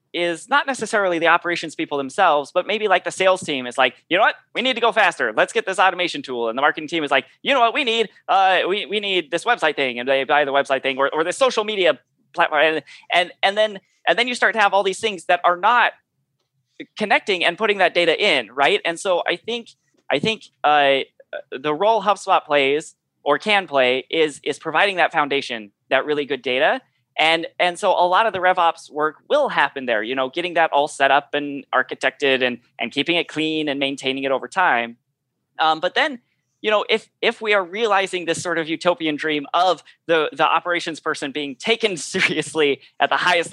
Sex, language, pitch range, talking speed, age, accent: male, English, 135-185 Hz, 220 wpm, 30-49, American